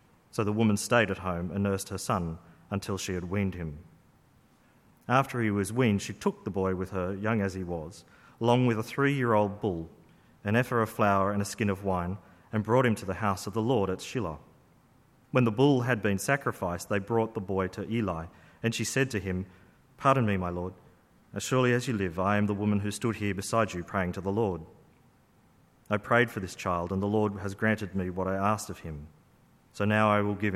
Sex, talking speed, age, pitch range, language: male, 225 wpm, 40-59, 95-115 Hz, English